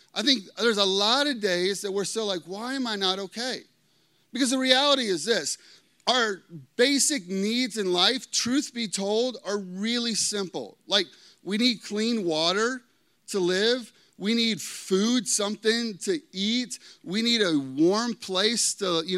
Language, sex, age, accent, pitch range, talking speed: English, male, 30-49, American, 180-235 Hz, 165 wpm